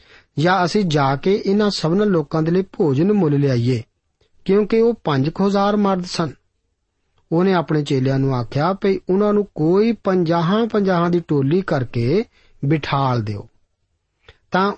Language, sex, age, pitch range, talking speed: Punjabi, male, 50-69, 140-195 Hz, 135 wpm